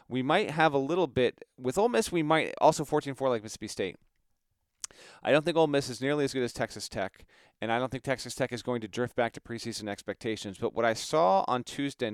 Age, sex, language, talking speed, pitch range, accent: 30-49, male, English, 235 wpm, 110-135 Hz, American